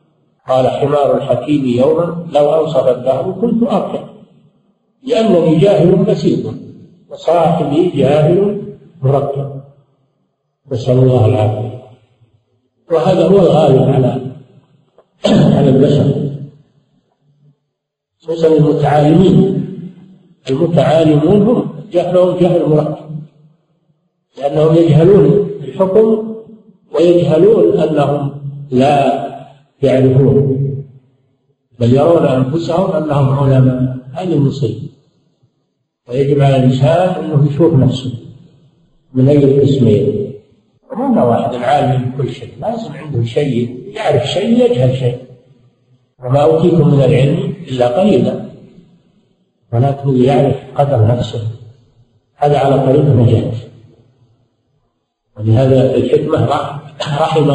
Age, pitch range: 50-69, 130-165 Hz